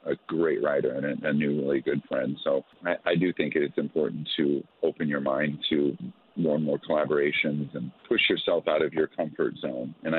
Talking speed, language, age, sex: 200 wpm, English, 40-59, male